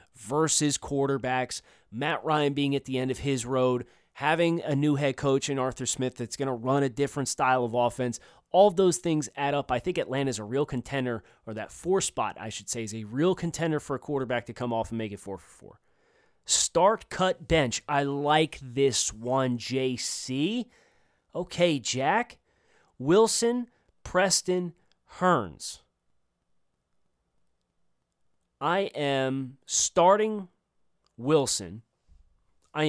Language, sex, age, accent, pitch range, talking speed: English, male, 30-49, American, 115-150 Hz, 150 wpm